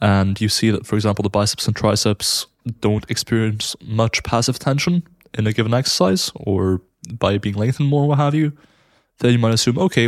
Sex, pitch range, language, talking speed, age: male, 105-125 Hz, English, 190 wpm, 20-39